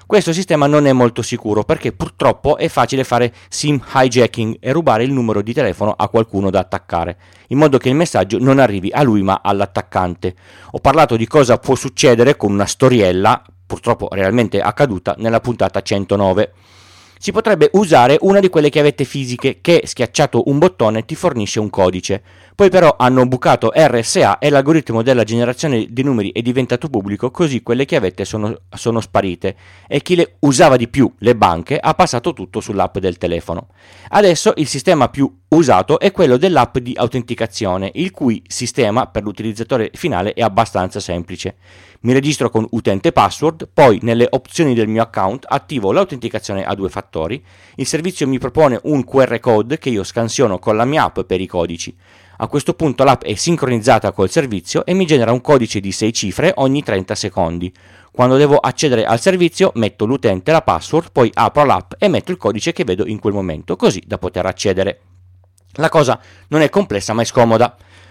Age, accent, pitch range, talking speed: 40-59, native, 100-140 Hz, 180 wpm